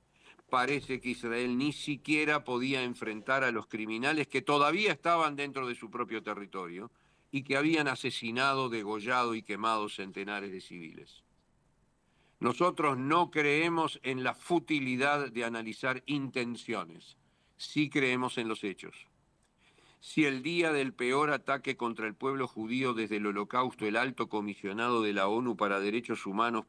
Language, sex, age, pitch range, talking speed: Spanish, male, 50-69, 110-140 Hz, 145 wpm